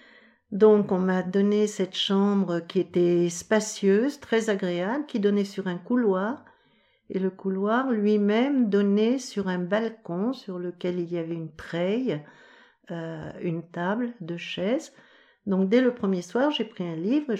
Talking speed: 160 wpm